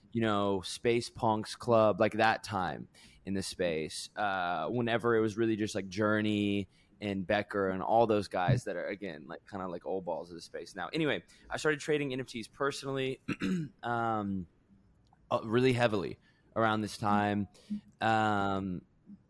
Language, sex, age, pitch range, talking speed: English, male, 20-39, 100-115 Hz, 160 wpm